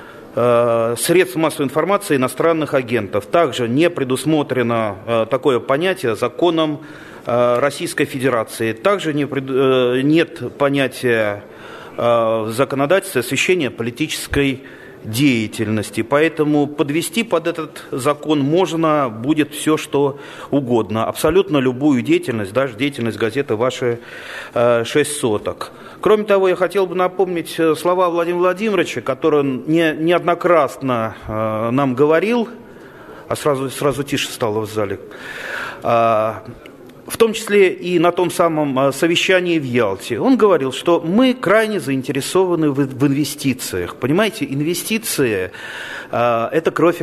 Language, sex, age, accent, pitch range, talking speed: Russian, male, 30-49, native, 125-170 Hz, 105 wpm